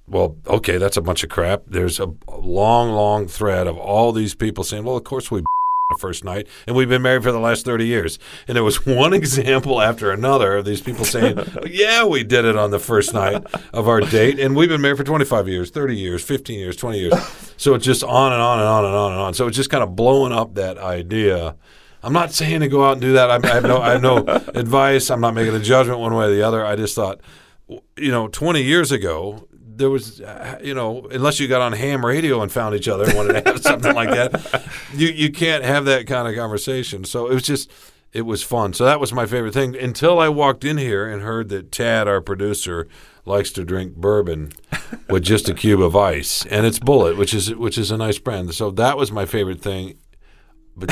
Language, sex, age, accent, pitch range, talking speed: English, male, 50-69, American, 100-130 Hz, 245 wpm